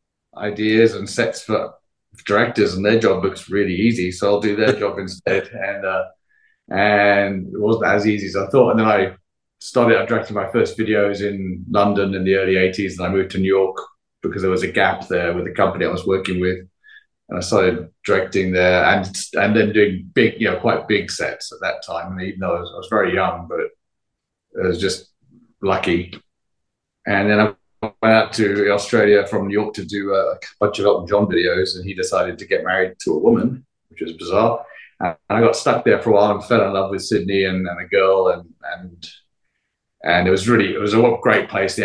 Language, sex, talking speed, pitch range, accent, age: English, male, 215 wpm, 95-105 Hz, British, 30-49